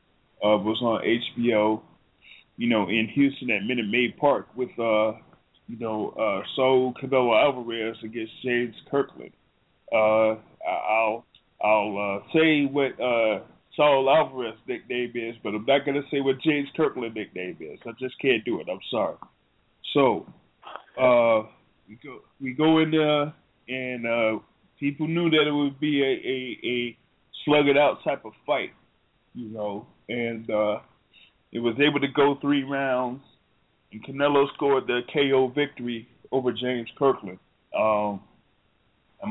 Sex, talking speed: male, 150 wpm